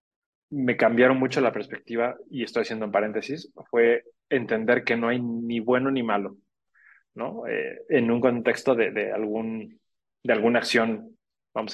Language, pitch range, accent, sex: Spanish, 115-135 Hz, Mexican, male